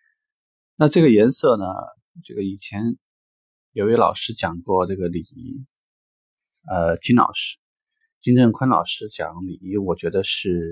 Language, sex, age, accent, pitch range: Chinese, male, 20-39, native, 95-125 Hz